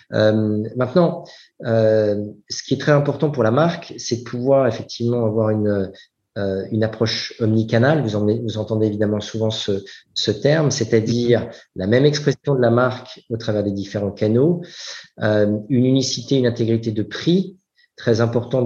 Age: 40-59